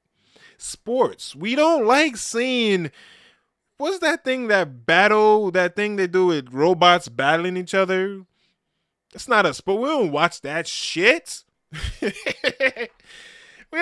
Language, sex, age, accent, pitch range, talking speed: English, male, 20-39, American, 140-225 Hz, 125 wpm